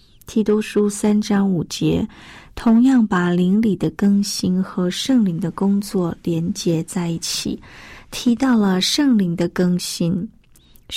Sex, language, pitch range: female, Chinese, 180-220 Hz